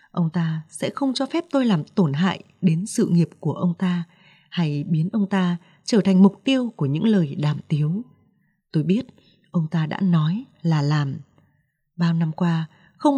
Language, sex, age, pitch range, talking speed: Vietnamese, female, 20-39, 160-205 Hz, 185 wpm